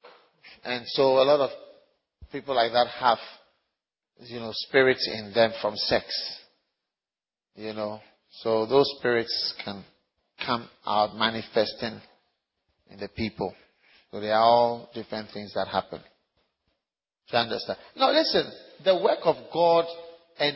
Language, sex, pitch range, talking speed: English, male, 135-215 Hz, 130 wpm